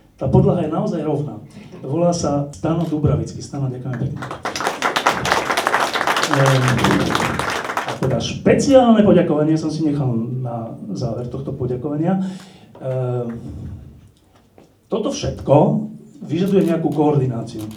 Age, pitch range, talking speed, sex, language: 40-59, 135-180 Hz, 105 wpm, male, Slovak